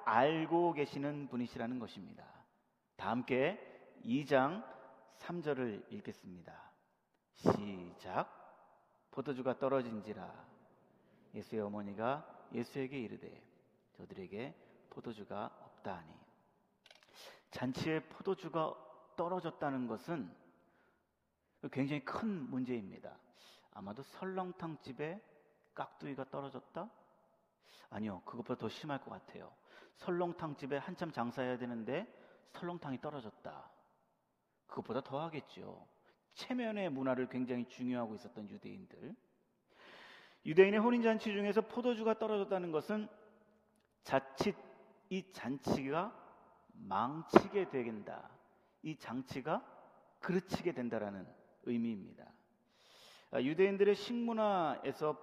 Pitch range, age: 130-185 Hz, 40-59